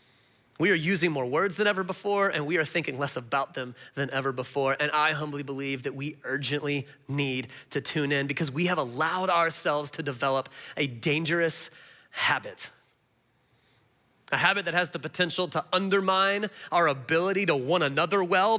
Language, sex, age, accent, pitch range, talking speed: English, male, 30-49, American, 145-190 Hz, 170 wpm